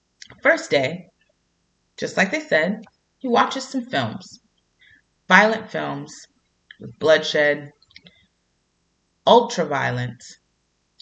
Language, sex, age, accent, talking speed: English, female, 30-49, American, 85 wpm